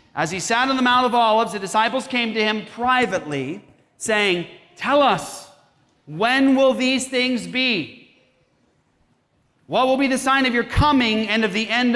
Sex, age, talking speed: male, 40-59, 170 wpm